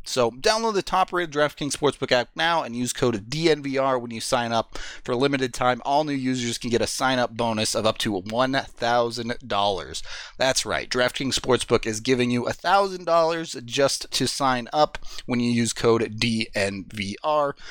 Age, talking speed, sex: 30-49, 165 wpm, male